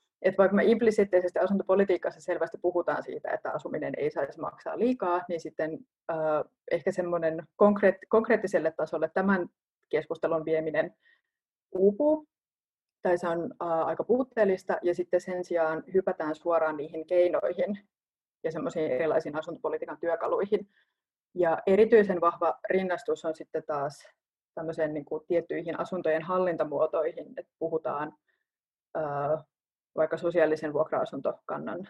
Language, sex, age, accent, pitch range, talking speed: Finnish, female, 30-49, native, 160-195 Hz, 115 wpm